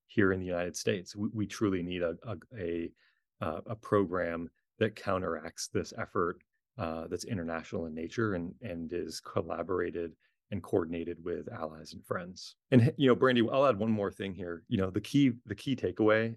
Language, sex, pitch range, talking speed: English, male, 85-110 Hz, 185 wpm